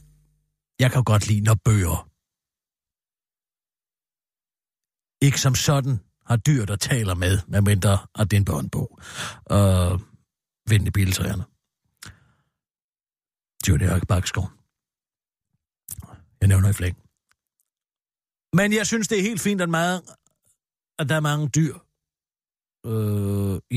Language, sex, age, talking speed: Danish, male, 60-79, 110 wpm